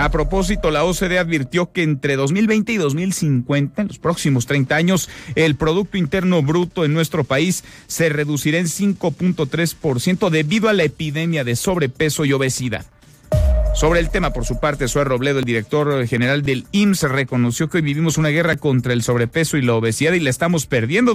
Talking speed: 180 wpm